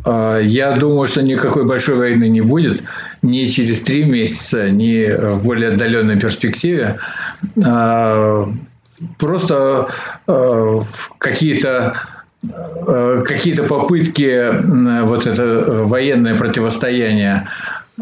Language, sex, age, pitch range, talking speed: Russian, male, 50-69, 110-140 Hz, 75 wpm